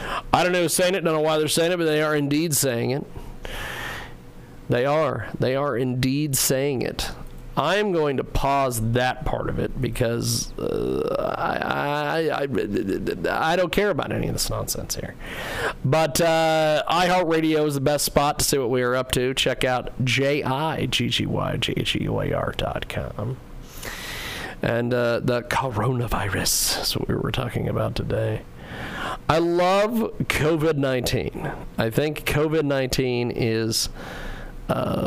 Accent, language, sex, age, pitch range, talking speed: American, English, male, 40-59, 120-155 Hz, 145 wpm